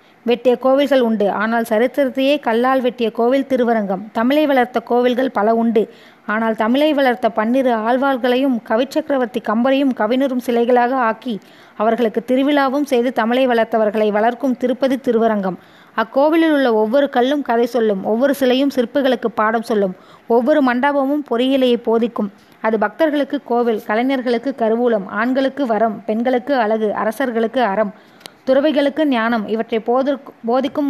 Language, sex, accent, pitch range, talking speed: Tamil, female, native, 225-265 Hz, 120 wpm